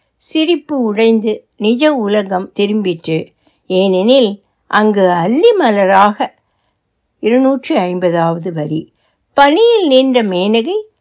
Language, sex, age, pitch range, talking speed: Tamil, female, 60-79, 195-305 Hz, 75 wpm